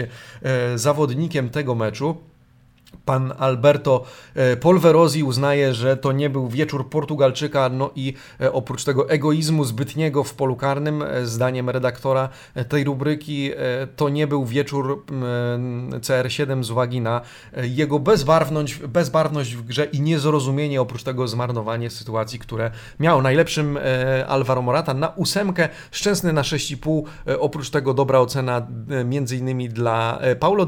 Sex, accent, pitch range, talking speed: male, native, 125-150 Hz, 125 wpm